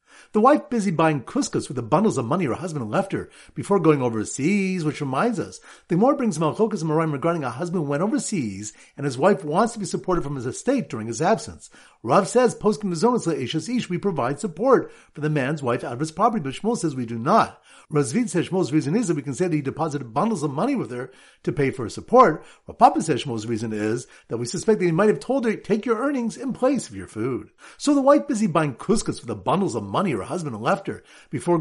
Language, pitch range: English, 145-210 Hz